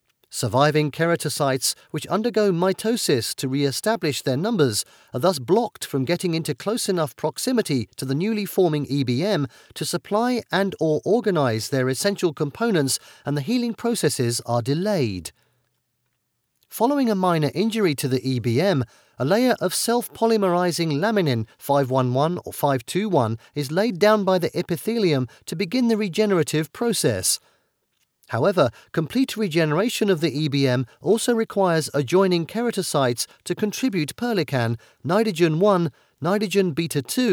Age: 40-59